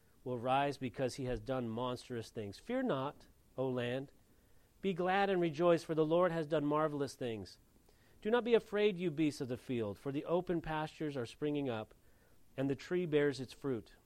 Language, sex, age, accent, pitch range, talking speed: English, male, 40-59, American, 120-175 Hz, 190 wpm